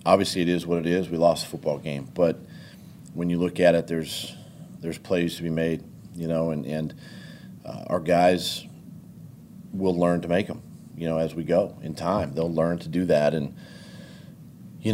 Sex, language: male, English